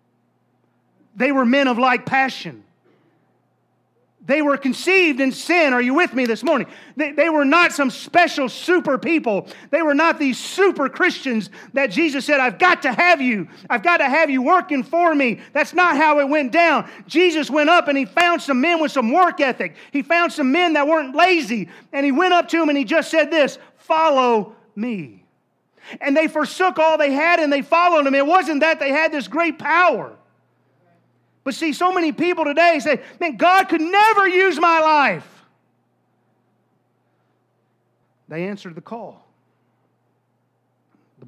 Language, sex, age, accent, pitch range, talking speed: English, male, 40-59, American, 215-315 Hz, 175 wpm